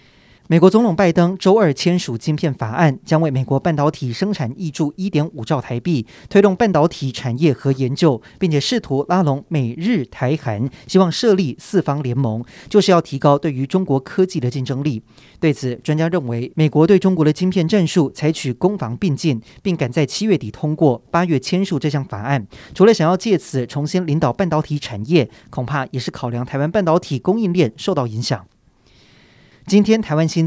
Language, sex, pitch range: Chinese, male, 130-180 Hz